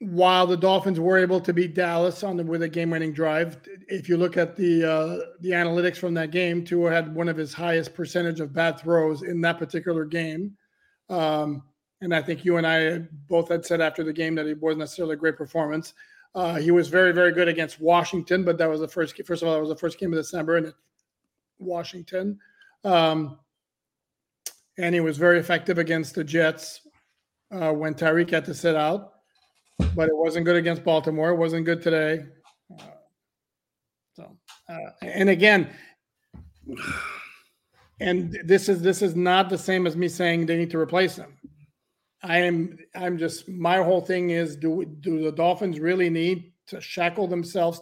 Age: 40-59